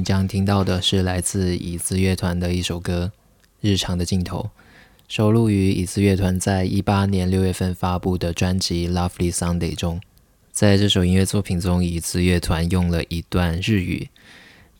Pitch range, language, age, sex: 85-100 Hz, Chinese, 20-39, male